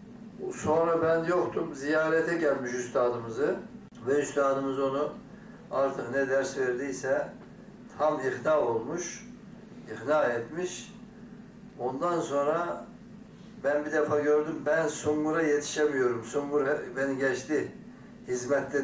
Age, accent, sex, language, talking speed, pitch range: 60-79, native, male, Turkish, 100 wpm, 150-210 Hz